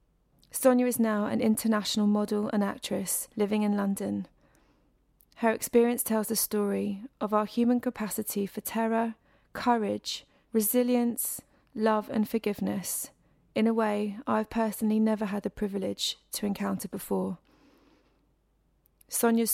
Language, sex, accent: English, female, British